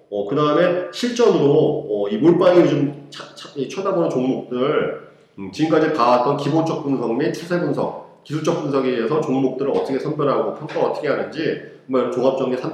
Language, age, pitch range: Korean, 40-59, 130-180 Hz